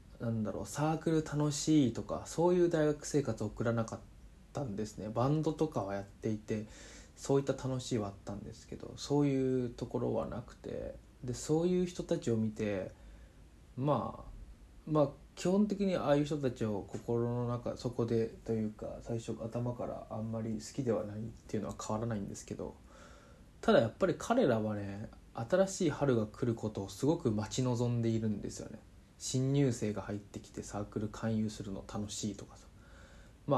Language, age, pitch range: Japanese, 20-39, 105-135 Hz